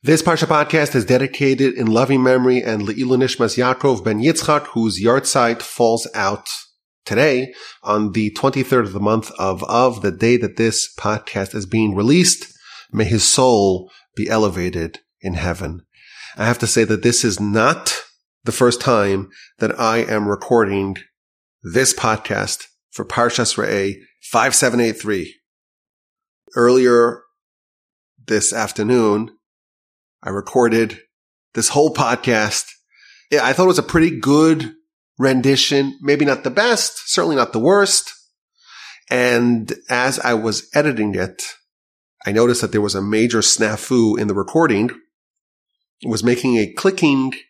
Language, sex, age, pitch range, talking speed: English, male, 30-49, 110-135 Hz, 140 wpm